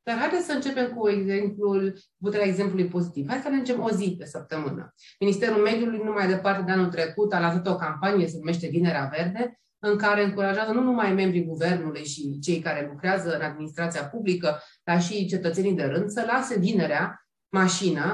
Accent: native